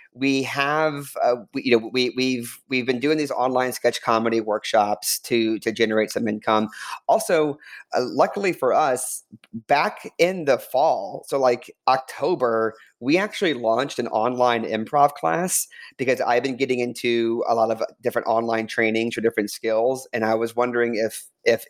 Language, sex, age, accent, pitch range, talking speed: English, male, 40-59, American, 110-135 Hz, 165 wpm